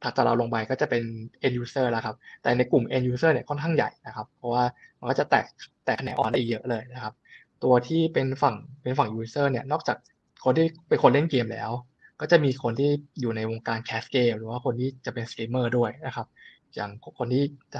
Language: Thai